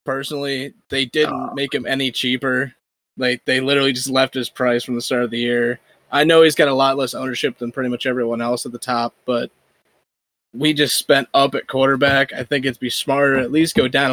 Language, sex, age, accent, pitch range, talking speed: English, male, 20-39, American, 130-155 Hz, 225 wpm